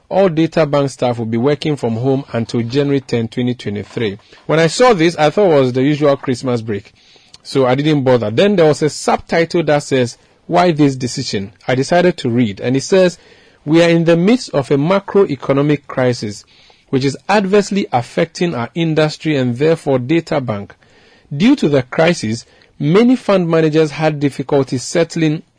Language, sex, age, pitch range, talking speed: English, male, 40-59, 125-165 Hz, 175 wpm